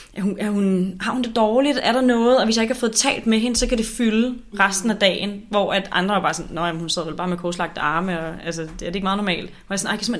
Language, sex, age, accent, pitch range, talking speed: Danish, female, 30-49, native, 170-200 Hz, 300 wpm